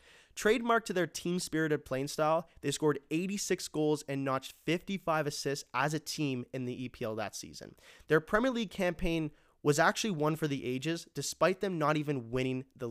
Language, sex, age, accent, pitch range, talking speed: English, male, 20-39, American, 130-180 Hz, 175 wpm